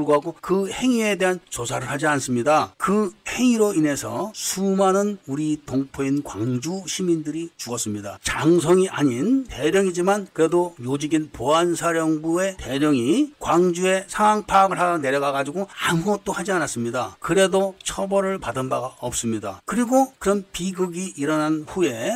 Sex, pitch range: male, 145-190 Hz